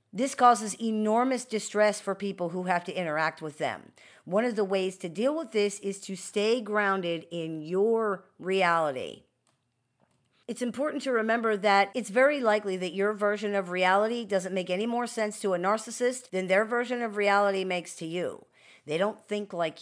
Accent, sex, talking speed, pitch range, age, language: American, female, 180 wpm, 185-220 Hz, 50-69, English